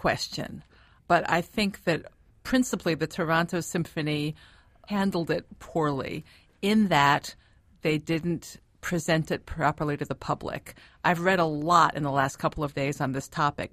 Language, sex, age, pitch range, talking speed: English, female, 50-69, 145-170 Hz, 155 wpm